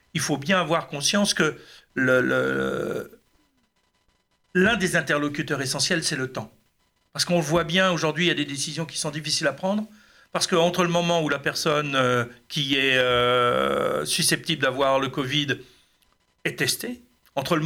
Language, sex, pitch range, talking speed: French, male, 140-170 Hz, 175 wpm